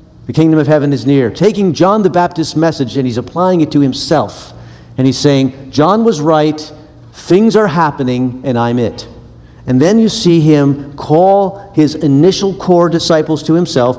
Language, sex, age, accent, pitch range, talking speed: English, male, 50-69, American, 125-165 Hz, 175 wpm